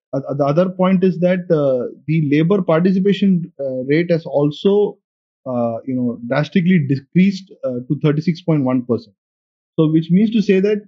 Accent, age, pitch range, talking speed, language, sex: Indian, 30-49, 140-185 Hz, 155 wpm, English, male